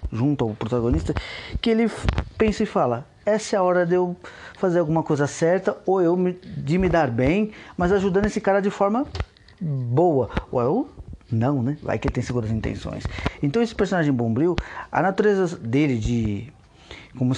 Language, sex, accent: Portuguese, male, Brazilian